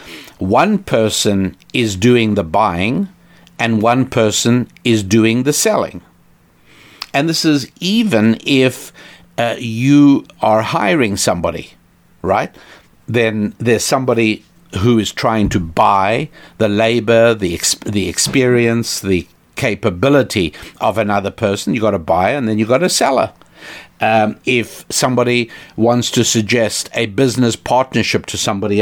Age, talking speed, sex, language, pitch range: 60-79, 135 wpm, male, English, 110-130 Hz